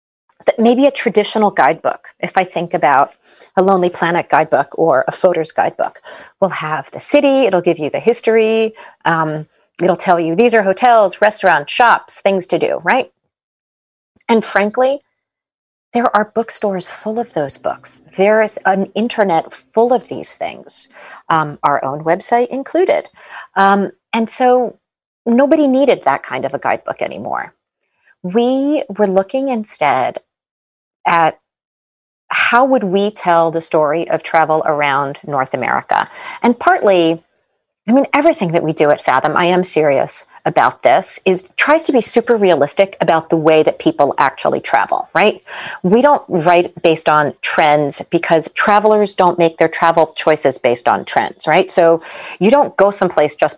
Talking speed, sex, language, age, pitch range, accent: 155 wpm, female, English, 40-59, 165-235 Hz, American